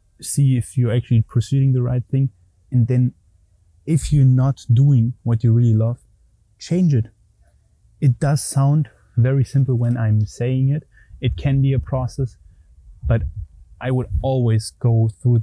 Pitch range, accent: 110-125 Hz, German